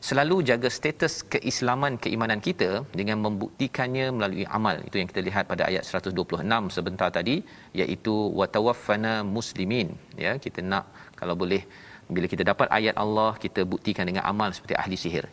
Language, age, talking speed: Malayalam, 40-59, 155 wpm